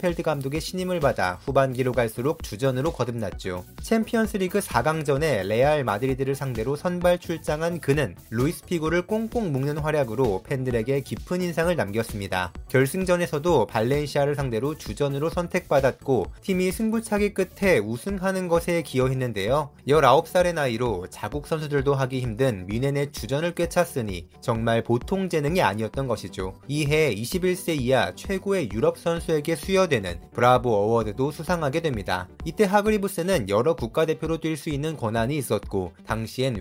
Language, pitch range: Korean, 115-175 Hz